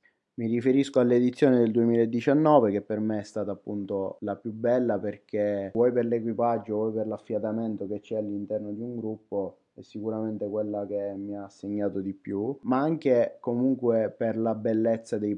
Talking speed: 170 wpm